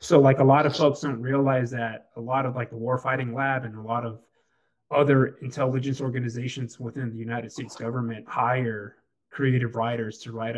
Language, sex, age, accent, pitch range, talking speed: English, male, 20-39, American, 115-135 Hz, 185 wpm